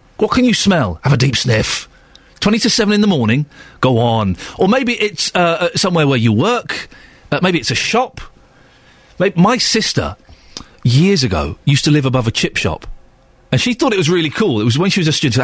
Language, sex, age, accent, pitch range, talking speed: English, male, 40-59, British, 110-175 Hz, 220 wpm